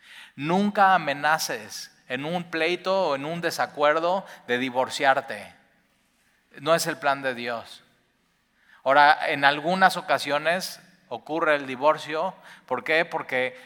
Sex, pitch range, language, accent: male, 130-165 Hz, Spanish, Mexican